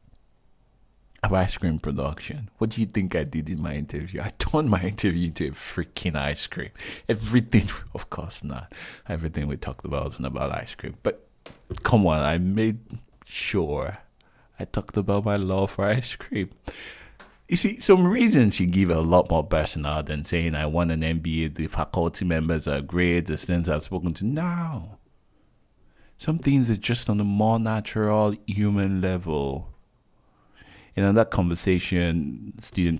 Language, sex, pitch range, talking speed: English, male, 80-110 Hz, 165 wpm